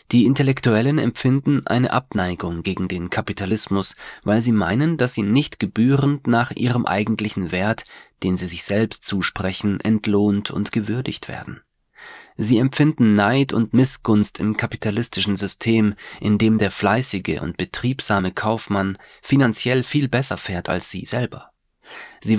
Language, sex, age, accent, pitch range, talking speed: English, male, 30-49, German, 95-125 Hz, 135 wpm